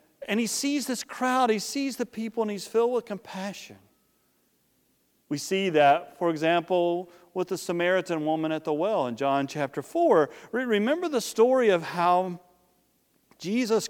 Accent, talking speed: American, 155 wpm